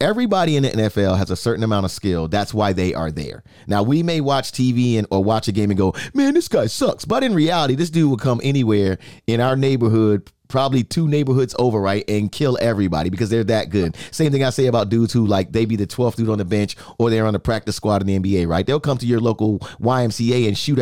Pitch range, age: 100-155 Hz, 30-49